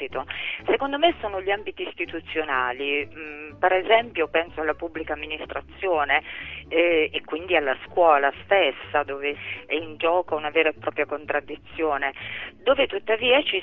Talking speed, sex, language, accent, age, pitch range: 130 wpm, female, Italian, native, 40-59, 145-180 Hz